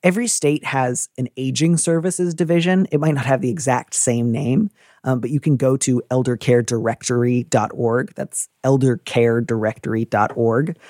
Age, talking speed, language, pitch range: 30-49, 130 wpm, English, 120-145 Hz